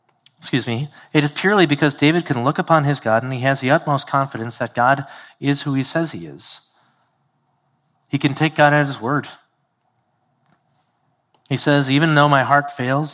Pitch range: 135-160 Hz